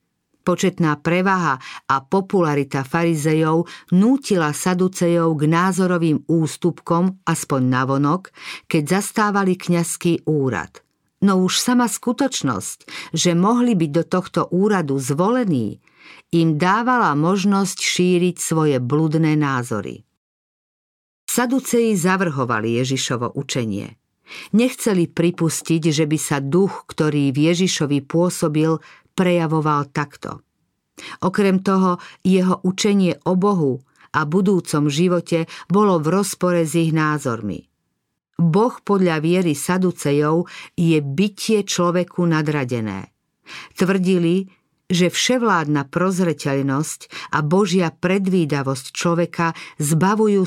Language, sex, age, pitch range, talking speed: Slovak, female, 50-69, 155-190 Hz, 100 wpm